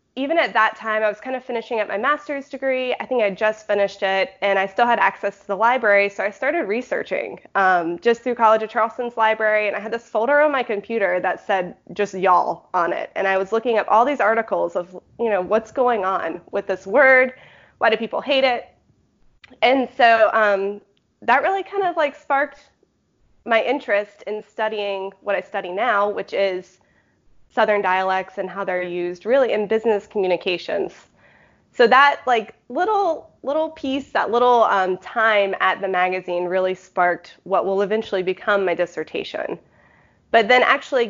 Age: 20-39